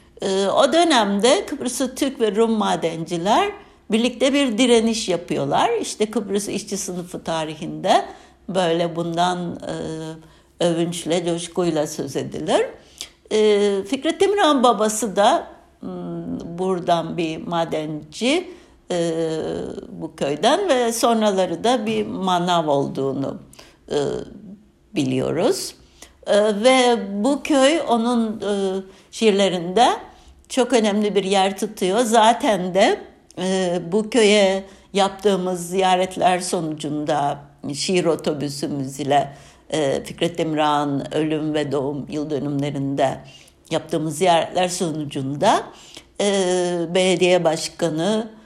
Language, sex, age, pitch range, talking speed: Turkish, female, 60-79, 160-220 Hz, 90 wpm